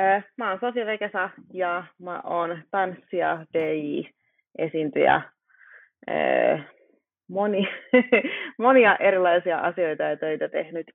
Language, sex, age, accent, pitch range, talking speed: Finnish, female, 30-49, native, 155-195 Hz, 95 wpm